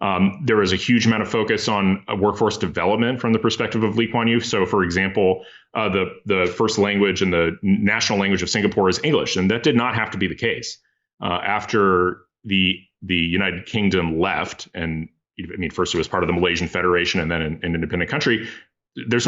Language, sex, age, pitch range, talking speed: English, male, 30-49, 85-105 Hz, 210 wpm